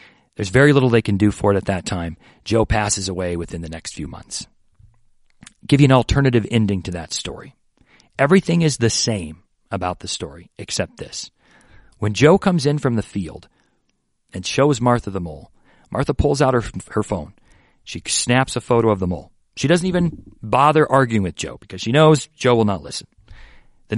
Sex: male